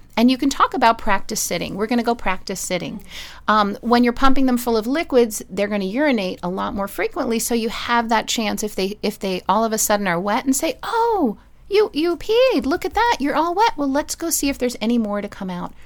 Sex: female